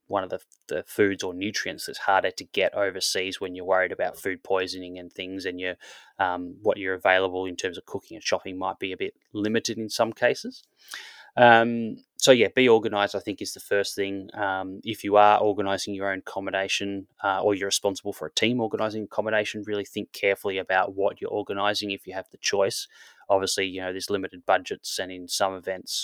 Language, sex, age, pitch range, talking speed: English, male, 20-39, 95-100 Hz, 205 wpm